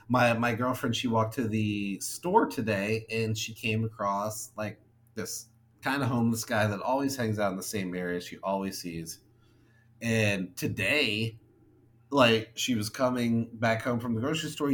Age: 30-49